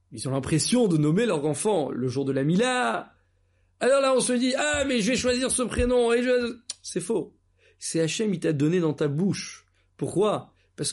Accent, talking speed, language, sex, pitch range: French, 220 wpm, French, male, 125-185 Hz